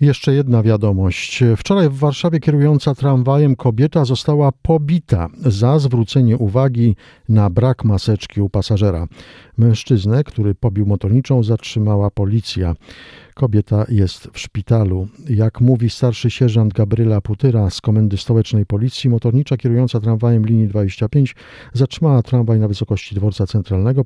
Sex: male